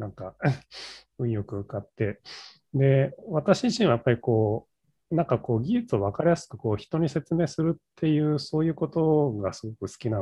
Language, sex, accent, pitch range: Japanese, male, native, 105-150 Hz